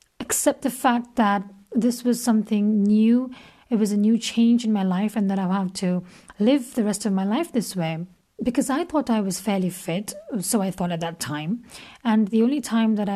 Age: 40-59